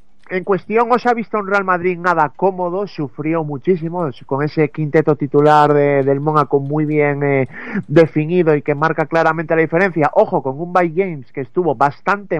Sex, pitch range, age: male, 140-170 Hz, 30-49